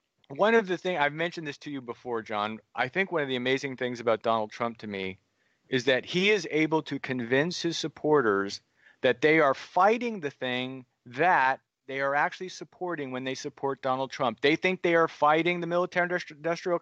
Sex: male